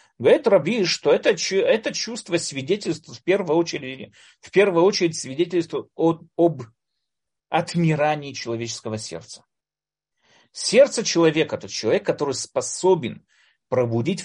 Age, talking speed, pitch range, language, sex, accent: 30-49, 100 wpm, 150-210 Hz, Russian, male, native